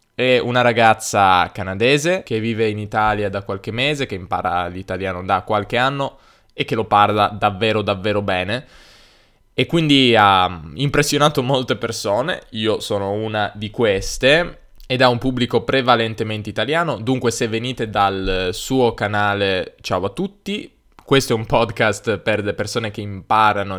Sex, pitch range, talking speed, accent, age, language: male, 100-130 Hz, 150 wpm, native, 10-29, Italian